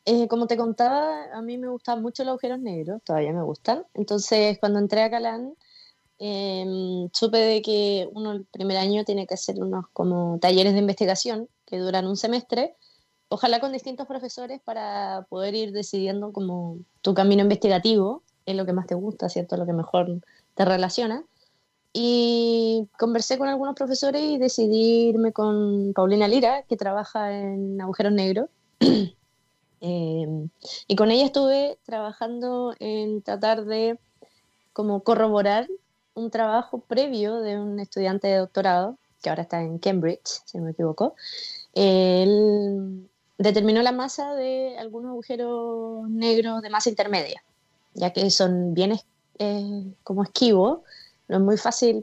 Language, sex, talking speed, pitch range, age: Spanish, female, 150 wpm, 195-235 Hz, 20-39